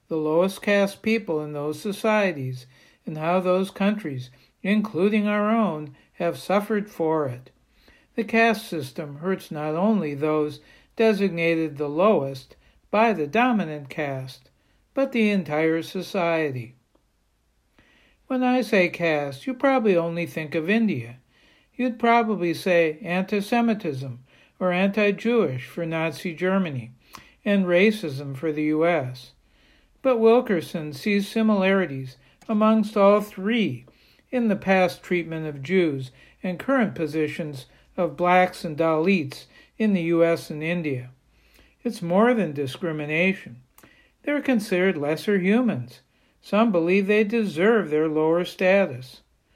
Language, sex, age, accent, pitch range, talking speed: English, male, 60-79, American, 155-205 Hz, 120 wpm